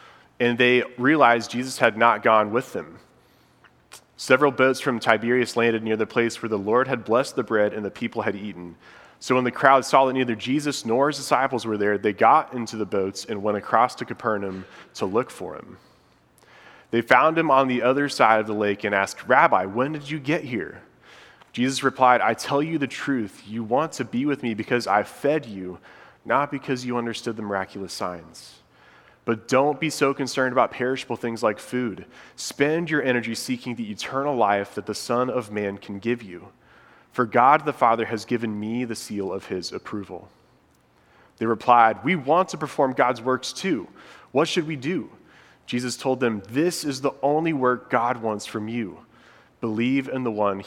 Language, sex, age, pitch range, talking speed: English, male, 30-49, 110-130 Hz, 195 wpm